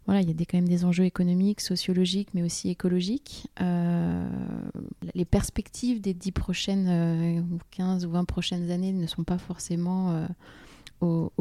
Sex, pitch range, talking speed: female, 175-205 Hz, 160 wpm